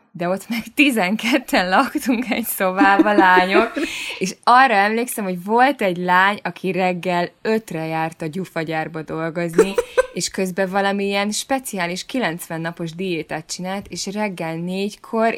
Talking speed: 130 wpm